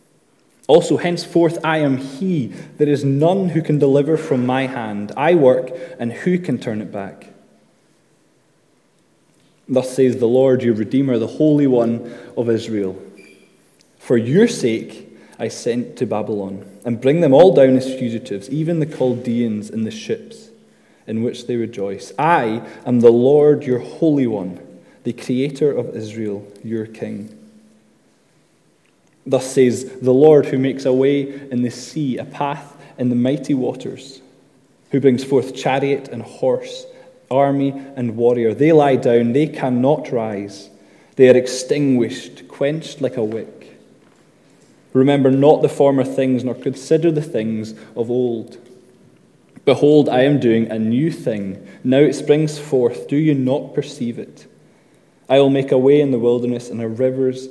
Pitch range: 120-145 Hz